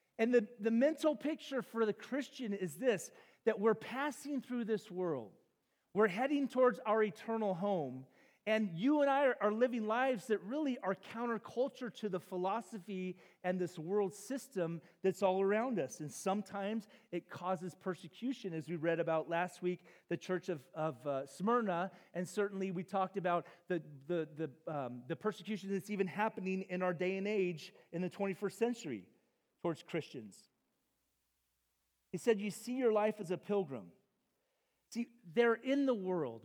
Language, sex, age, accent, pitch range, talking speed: English, male, 40-59, American, 175-230 Hz, 165 wpm